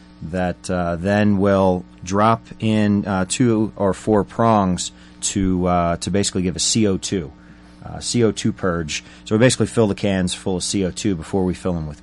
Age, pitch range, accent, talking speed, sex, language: 30-49, 85-100 Hz, American, 175 wpm, male, English